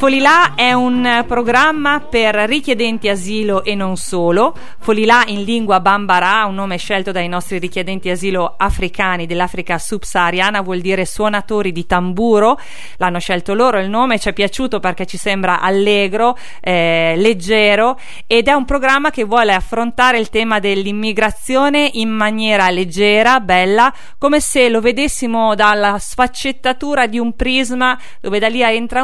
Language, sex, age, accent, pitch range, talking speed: Italian, female, 40-59, native, 190-245 Hz, 145 wpm